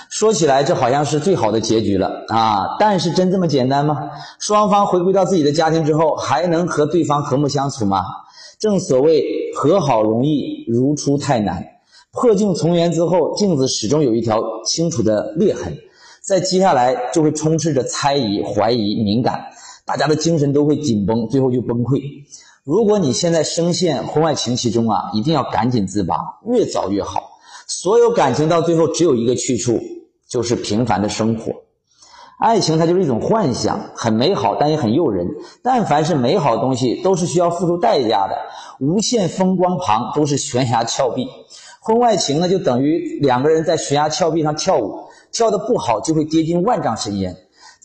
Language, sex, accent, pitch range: Chinese, male, native, 120-185 Hz